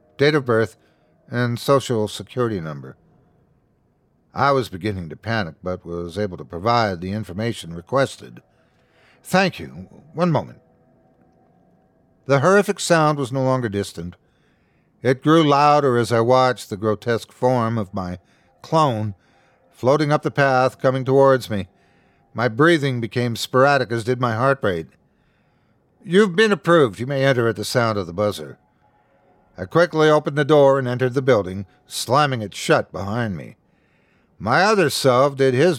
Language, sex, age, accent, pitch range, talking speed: English, male, 50-69, American, 100-140 Hz, 150 wpm